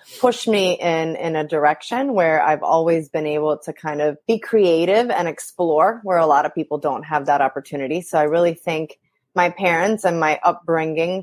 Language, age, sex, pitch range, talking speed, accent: English, 30-49, female, 165-205 Hz, 190 wpm, American